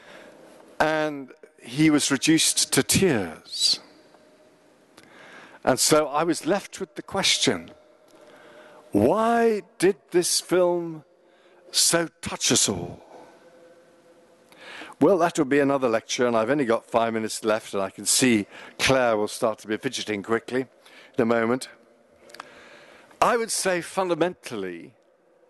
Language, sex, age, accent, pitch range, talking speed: English, male, 50-69, British, 115-170 Hz, 125 wpm